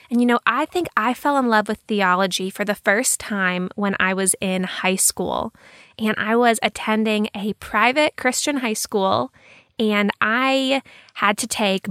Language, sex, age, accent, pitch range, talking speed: English, female, 20-39, American, 190-245 Hz, 175 wpm